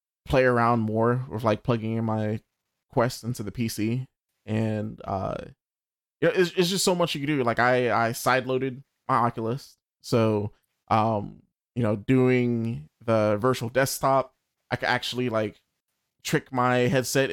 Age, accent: 20-39, American